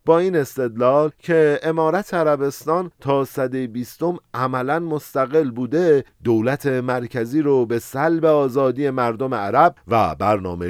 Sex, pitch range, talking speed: male, 120-155 Hz, 120 wpm